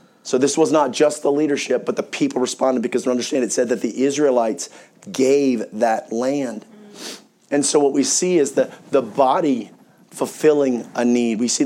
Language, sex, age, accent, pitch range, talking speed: English, male, 40-59, American, 120-145 Hz, 180 wpm